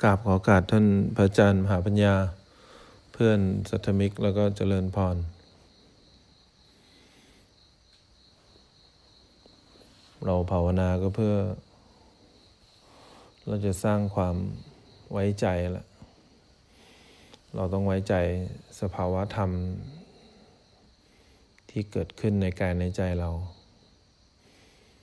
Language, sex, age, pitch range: English, male, 20-39, 90-100 Hz